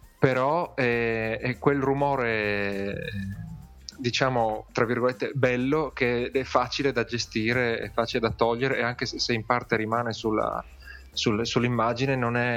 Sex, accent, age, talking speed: male, native, 20-39, 115 wpm